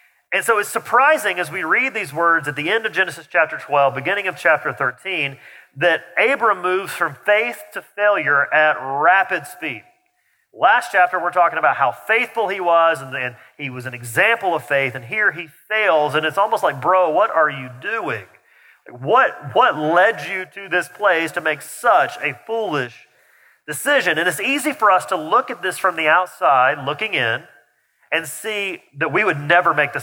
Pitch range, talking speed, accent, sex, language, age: 145-205 Hz, 190 wpm, American, male, English, 40-59